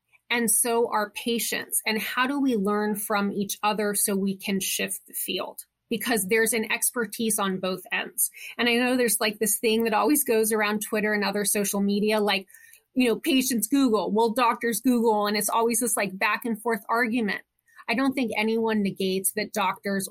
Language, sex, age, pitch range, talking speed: English, female, 30-49, 205-240 Hz, 195 wpm